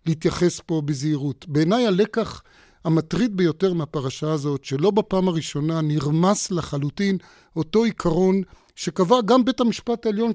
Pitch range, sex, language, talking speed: 155-190 Hz, male, Hebrew, 120 wpm